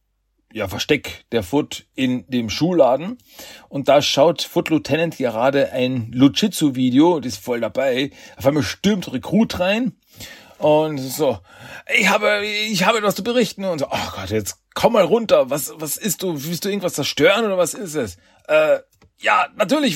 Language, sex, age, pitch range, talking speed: German, male, 40-59, 115-170 Hz, 170 wpm